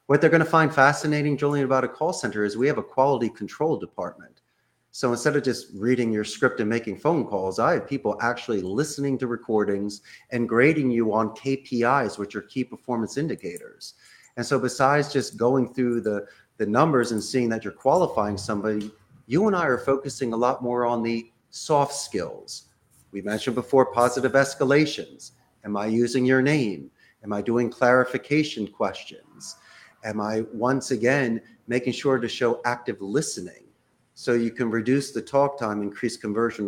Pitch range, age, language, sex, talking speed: 110-135 Hz, 40-59, English, male, 175 wpm